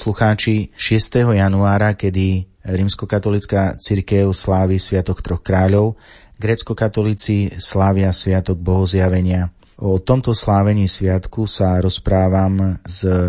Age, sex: 30-49, male